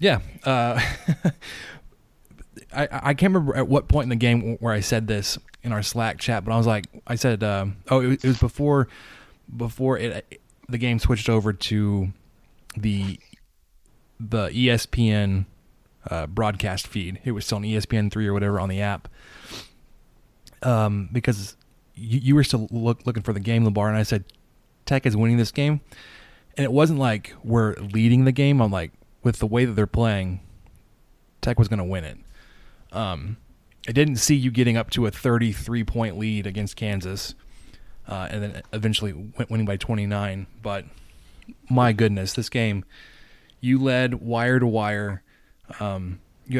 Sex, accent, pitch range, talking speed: male, American, 100-120 Hz, 170 wpm